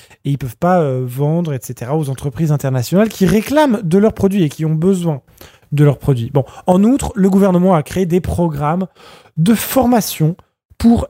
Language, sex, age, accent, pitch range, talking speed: French, male, 20-39, French, 155-235 Hz, 190 wpm